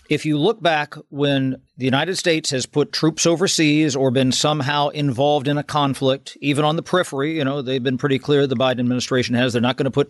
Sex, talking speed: male, 225 wpm